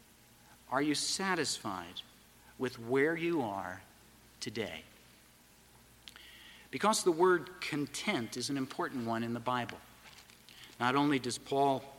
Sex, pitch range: male, 115-175 Hz